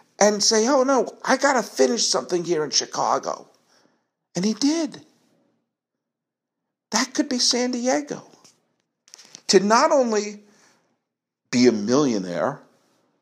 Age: 50-69